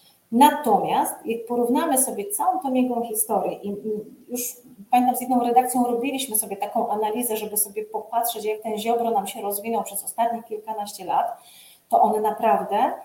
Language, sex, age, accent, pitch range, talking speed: Polish, female, 30-49, native, 220-270 Hz, 160 wpm